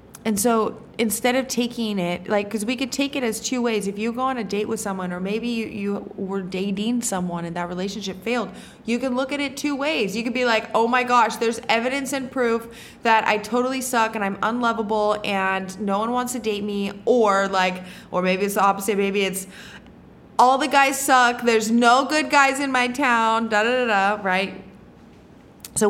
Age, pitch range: 20-39, 195-240 Hz